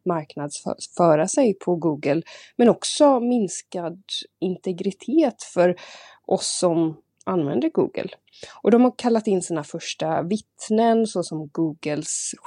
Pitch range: 170-235 Hz